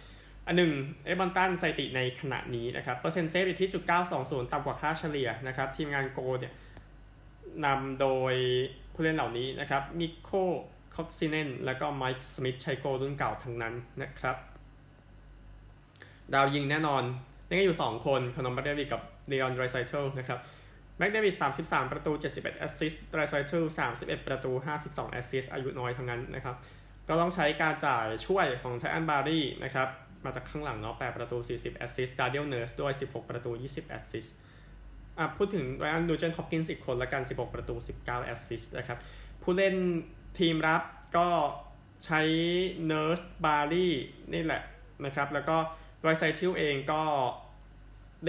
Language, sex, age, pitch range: Thai, male, 20-39, 125-155 Hz